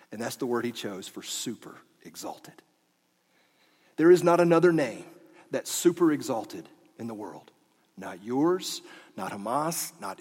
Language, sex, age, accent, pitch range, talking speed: English, male, 40-59, American, 135-190 Hz, 145 wpm